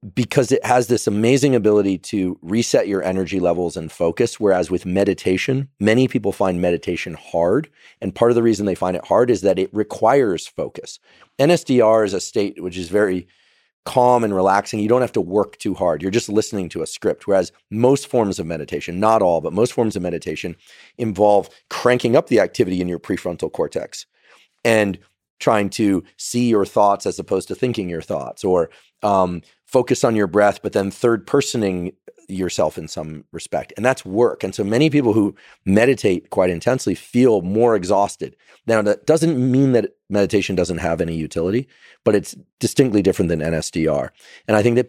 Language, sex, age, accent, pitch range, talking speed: English, male, 40-59, American, 90-120 Hz, 185 wpm